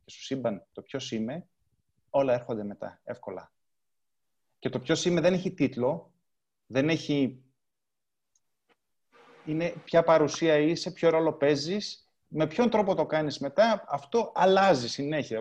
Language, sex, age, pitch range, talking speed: Greek, male, 20-39, 130-175 Hz, 130 wpm